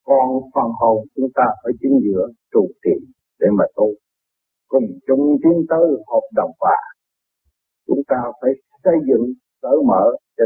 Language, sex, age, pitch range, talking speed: Vietnamese, male, 60-79, 110-175 Hz, 155 wpm